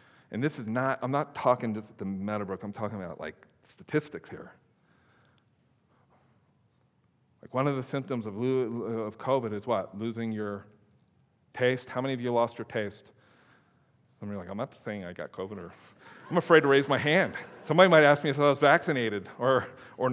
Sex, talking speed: male, 185 wpm